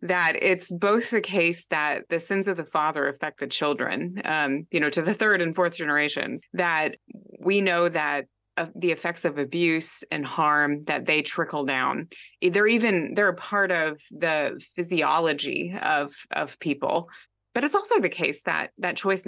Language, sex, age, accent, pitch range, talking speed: English, female, 20-39, American, 155-200 Hz, 175 wpm